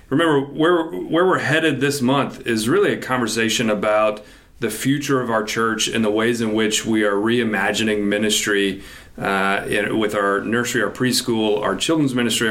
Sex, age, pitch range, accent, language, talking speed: male, 30-49, 105-125 Hz, American, English, 175 wpm